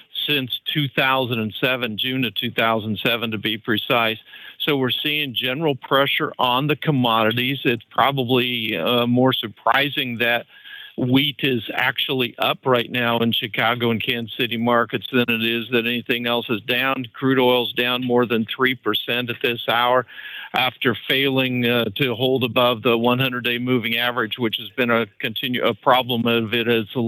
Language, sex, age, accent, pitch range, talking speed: English, male, 50-69, American, 115-130 Hz, 160 wpm